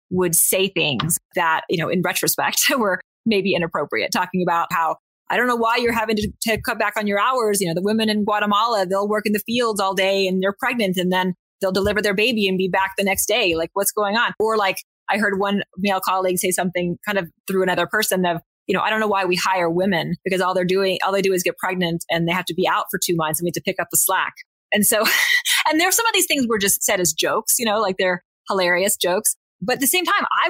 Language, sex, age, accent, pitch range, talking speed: English, female, 30-49, American, 175-210 Hz, 270 wpm